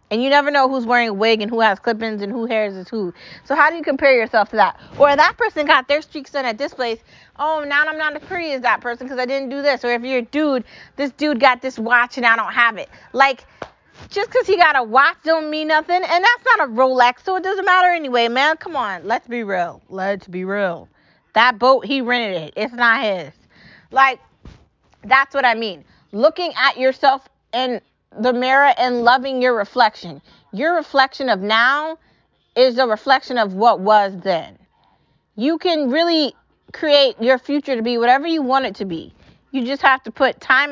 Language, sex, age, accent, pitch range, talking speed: English, female, 30-49, American, 225-285 Hz, 215 wpm